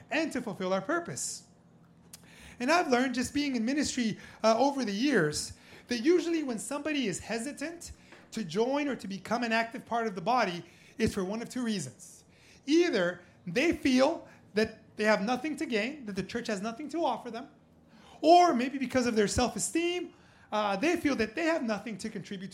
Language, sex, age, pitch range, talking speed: English, male, 30-49, 215-290 Hz, 185 wpm